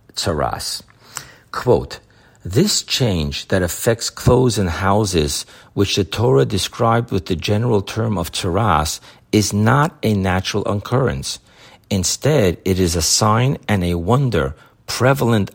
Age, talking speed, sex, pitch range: 50-69, 125 wpm, male, 85-120 Hz